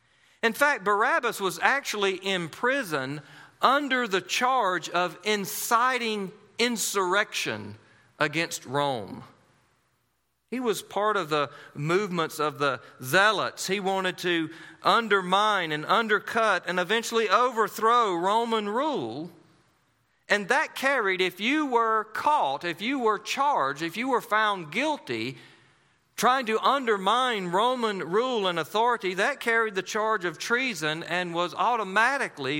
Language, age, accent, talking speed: English, 40-59, American, 125 wpm